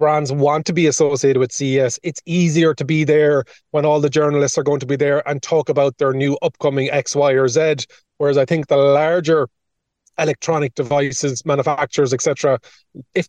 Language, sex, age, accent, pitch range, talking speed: English, male, 30-49, Irish, 135-155 Hz, 185 wpm